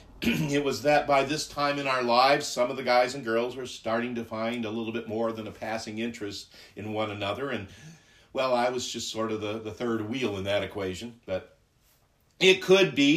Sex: male